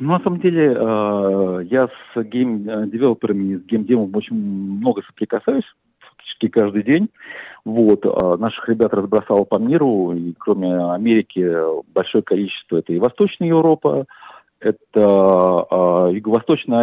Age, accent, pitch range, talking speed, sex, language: 40-59, native, 100-135 Hz, 110 wpm, male, Russian